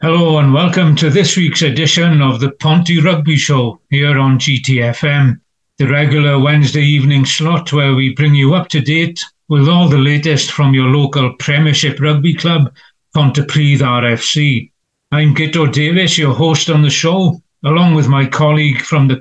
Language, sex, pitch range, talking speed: English, male, 140-155 Hz, 165 wpm